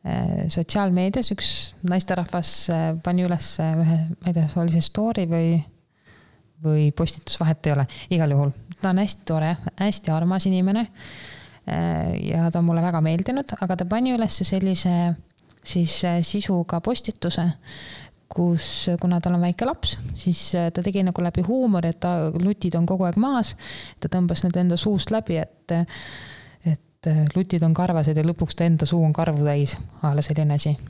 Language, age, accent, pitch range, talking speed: English, 20-39, Finnish, 160-185 Hz, 135 wpm